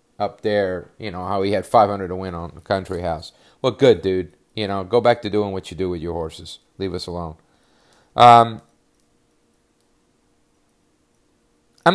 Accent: American